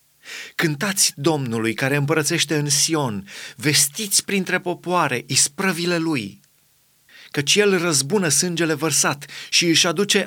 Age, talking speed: 30-49, 110 wpm